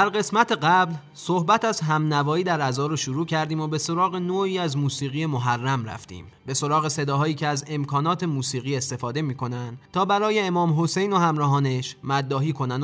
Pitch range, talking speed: 140-170 Hz, 165 wpm